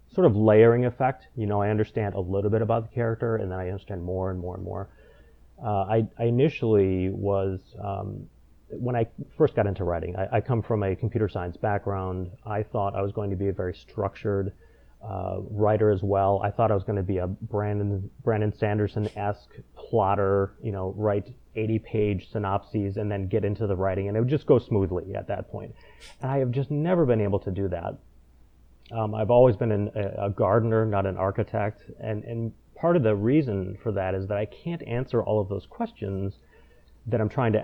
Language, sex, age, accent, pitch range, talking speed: English, male, 30-49, American, 95-115 Hz, 205 wpm